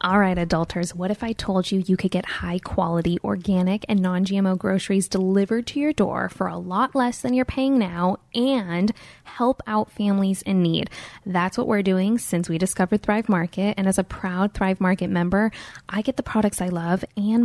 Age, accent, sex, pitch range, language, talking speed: 10-29, American, female, 185-220 Hz, English, 195 wpm